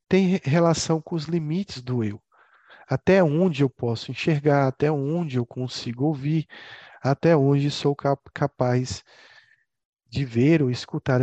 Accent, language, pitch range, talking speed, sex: Brazilian, Italian, 130-170 Hz, 135 wpm, male